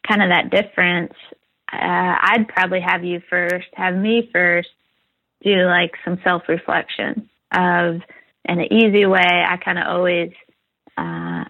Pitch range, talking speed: 175-200 Hz, 135 wpm